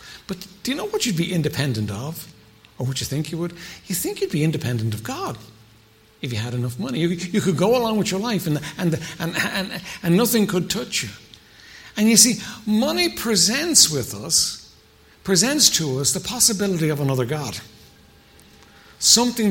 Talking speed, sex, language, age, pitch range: 180 wpm, male, English, 60-79, 135-220 Hz